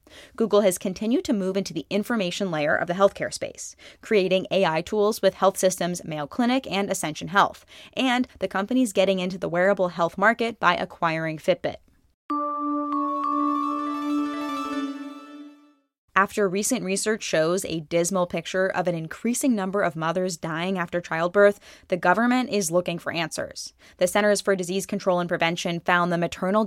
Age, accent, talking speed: 20-39, American, 155 wpm